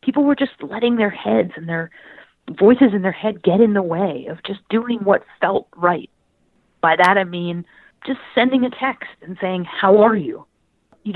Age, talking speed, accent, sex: 30-49, 195 wpm, American, female